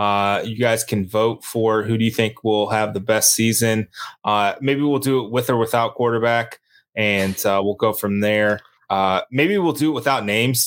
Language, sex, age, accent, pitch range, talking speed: English, male, 20-39, American, 110-125 Hz, 210 wpm